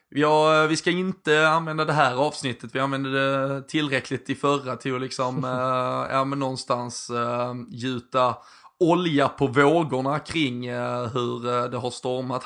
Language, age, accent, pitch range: Swedish, 20-39, native, 125-140 Hz